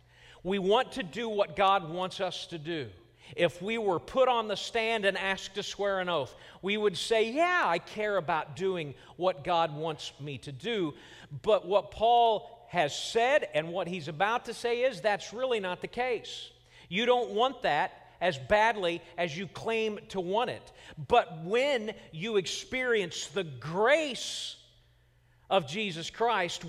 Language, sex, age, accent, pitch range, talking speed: English, male, 40-59, American, 155-230 Hz, 170 wpm